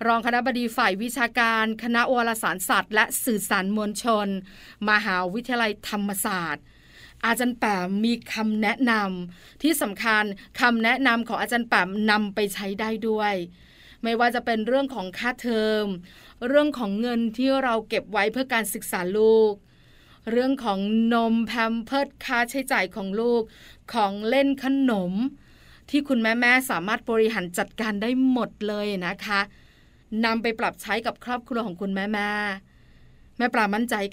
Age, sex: 20-39, female